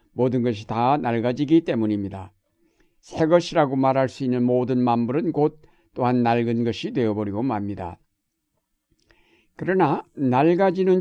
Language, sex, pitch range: Korean, male, 115-150 Hz